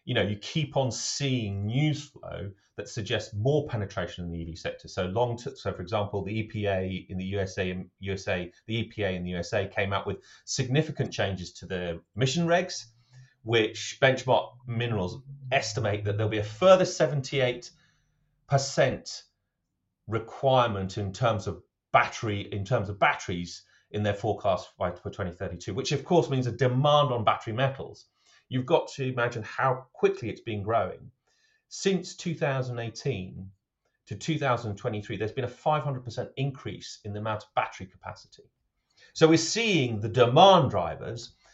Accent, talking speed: British, 155 wpm